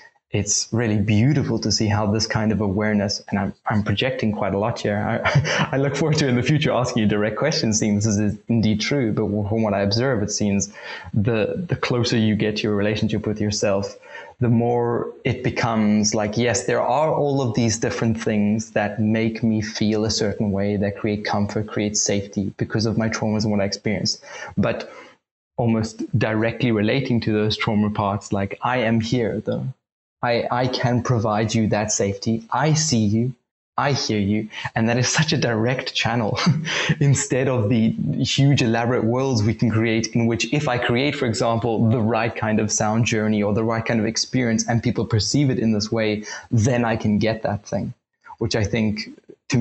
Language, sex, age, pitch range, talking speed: English, male, 20-39, 105-120 Hz, 195 wpm